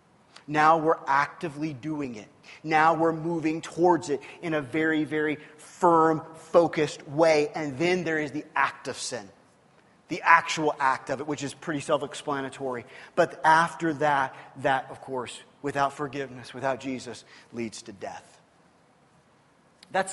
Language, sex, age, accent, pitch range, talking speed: English, male, 30-49, American, 145-170 Hz, 145 wpm